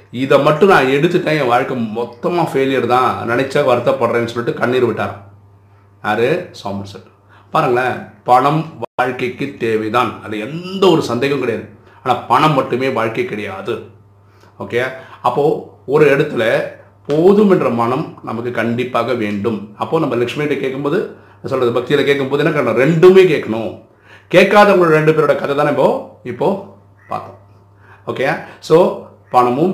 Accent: native